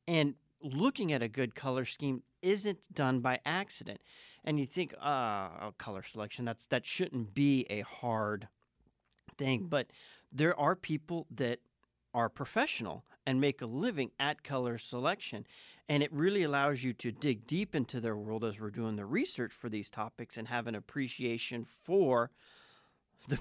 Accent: American